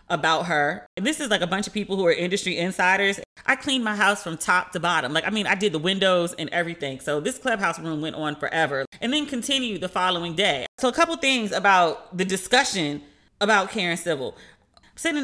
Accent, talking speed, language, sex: American, 215 wpm, English, female